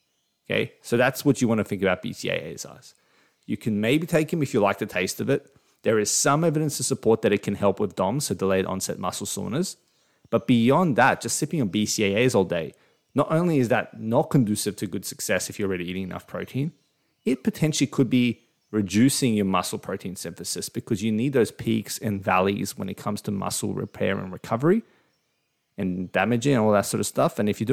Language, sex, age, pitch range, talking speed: English, male, 30-49, 100-135 Hz, 215 wpm